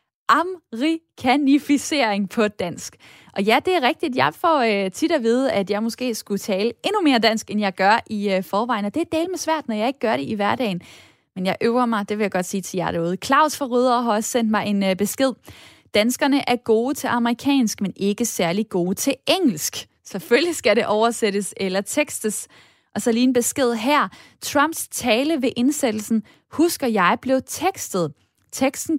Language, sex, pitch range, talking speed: Danish, female, 200-265 Hz, 190 wpm